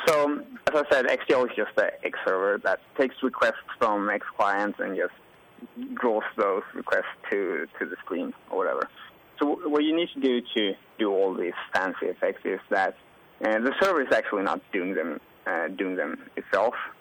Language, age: English, 30-49